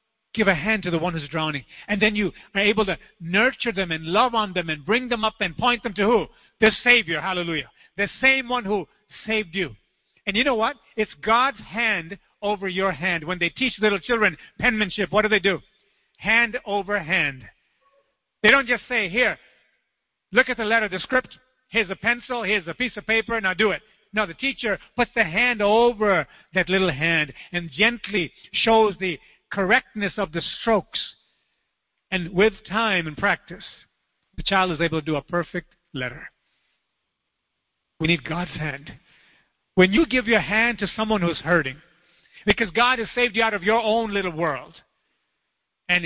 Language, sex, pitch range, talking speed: English, male, 175-225 Hz, 185 wpm